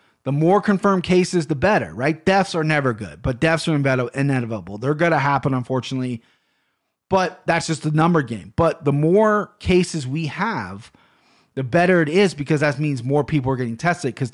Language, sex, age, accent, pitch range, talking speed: English, male, 30-49, American, 125-165 Hz, 190 wpm